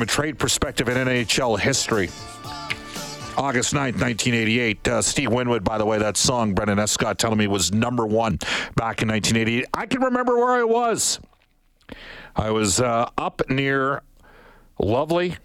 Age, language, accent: 50-69, English, American